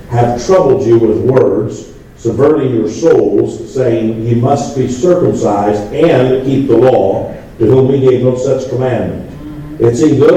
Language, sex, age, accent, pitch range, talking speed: English, male, 50-69, American, 105-130 Hz, 155 wpm